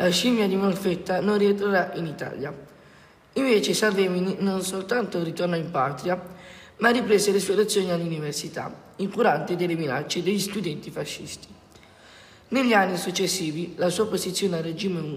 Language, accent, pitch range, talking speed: Italian, native, 165-200 Hz, 140 wpm